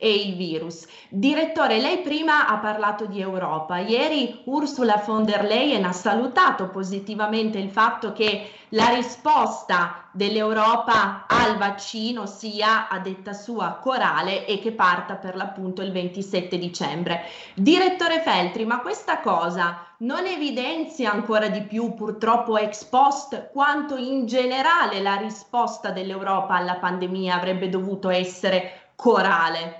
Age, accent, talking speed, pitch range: 20-39, native, 130 wpm, 185-230 Hz